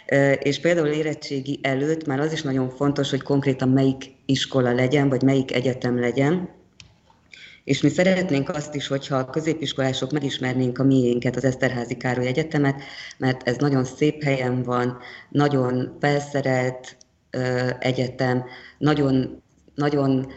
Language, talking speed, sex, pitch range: Hungarian, 130 wpm, female, 130-145 Hz